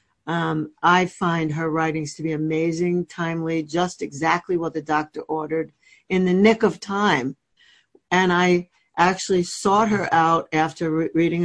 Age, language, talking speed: 60-79, English, 150 wpm